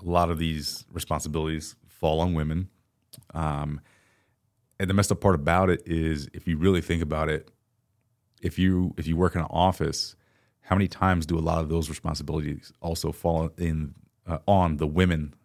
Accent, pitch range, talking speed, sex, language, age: American, 80-95 Hz, 185 wpm, male, English, 30-49